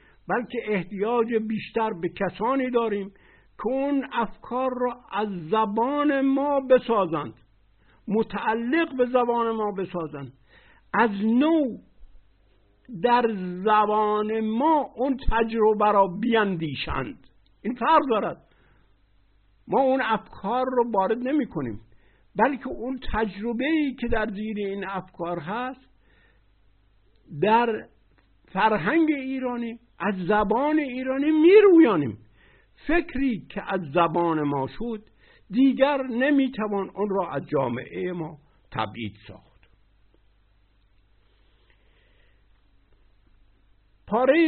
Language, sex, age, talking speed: Persian, male, 60-79, 95 wpm